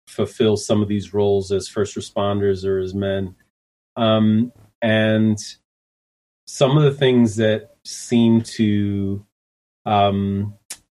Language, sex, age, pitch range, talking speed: English, male, 30-49, 100-115 Hz, 115 wpm